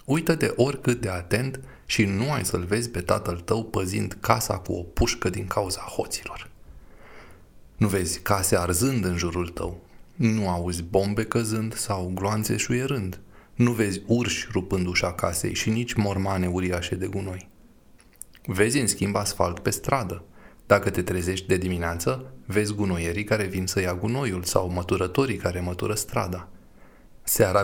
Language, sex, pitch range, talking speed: Romanian, male, 90-115 Hz, 150 wpm